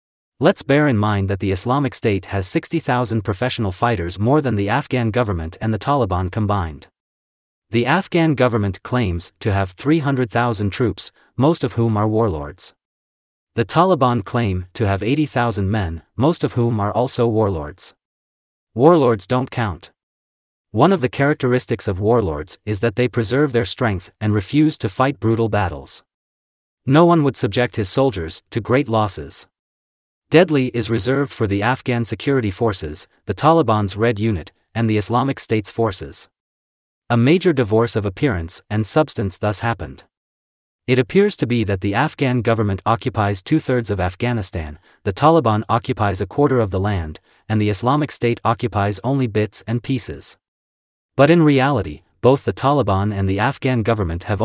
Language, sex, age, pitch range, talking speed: English, male, 30-49, 95-125 Hz, 160 wpm